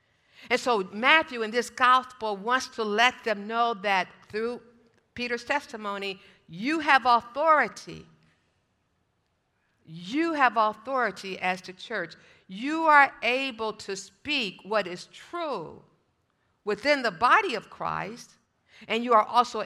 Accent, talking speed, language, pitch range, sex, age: American, 125 wpm, English, 210-260 Hz, female, 50-69